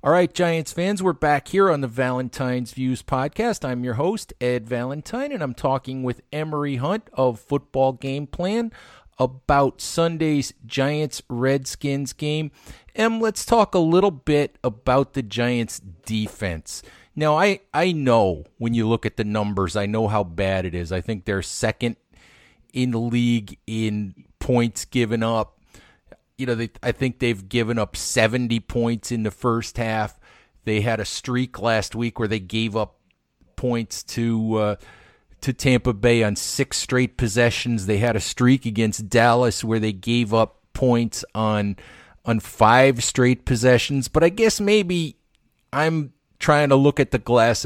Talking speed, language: 160 wpm, English